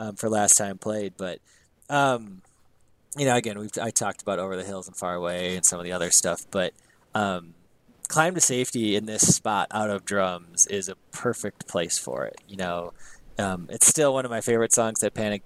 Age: 20-39